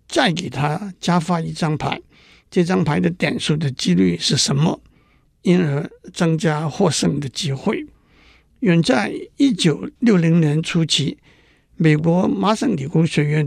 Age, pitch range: 60-79, 150-195 Hz